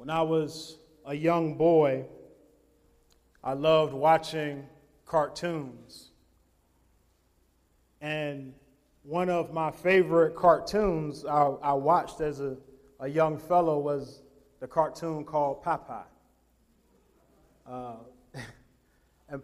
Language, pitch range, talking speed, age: English, 140-190 Hz, 95 wpm, 30-49